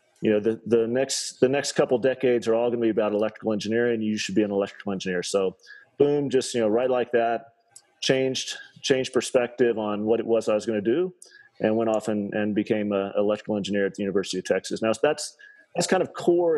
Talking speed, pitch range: 230 wpm, 105-130 Hz